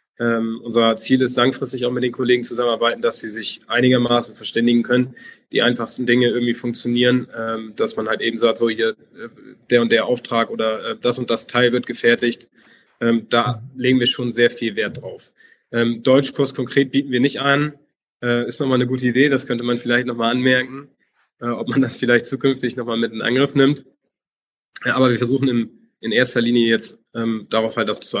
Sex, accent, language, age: male, German, German, 20-39